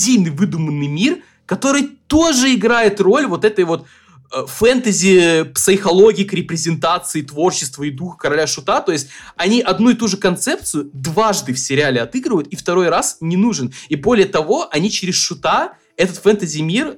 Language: Russian